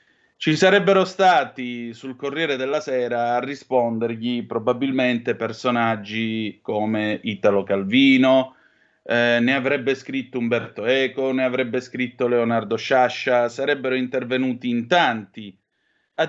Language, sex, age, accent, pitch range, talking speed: Italian, male, 30-49, native, 120-160 Hz, 110 wpm